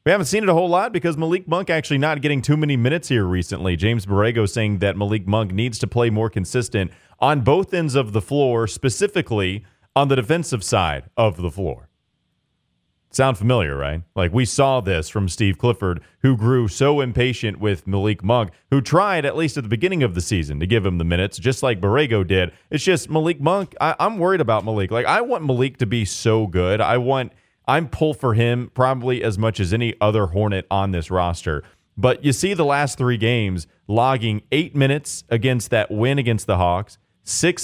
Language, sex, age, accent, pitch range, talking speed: English, male, 30-49, American, 100-135 Hz, 205 wpm